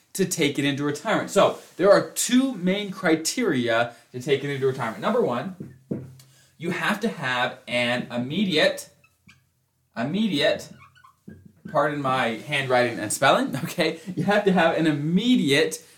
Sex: male